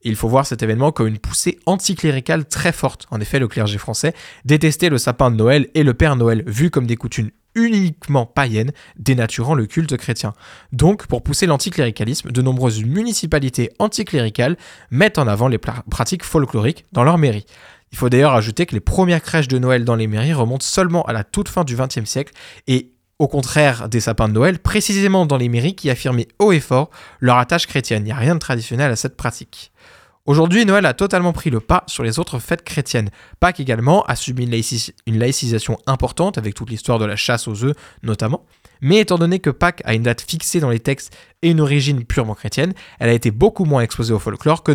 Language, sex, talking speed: French, male, 210 wpm